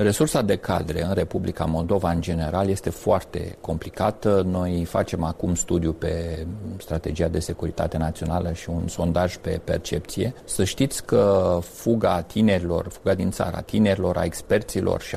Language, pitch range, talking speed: Romanian, 85-105 Hz, 145 wpm